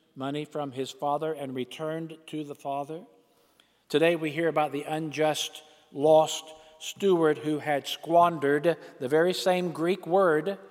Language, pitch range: English, 155-195 Hz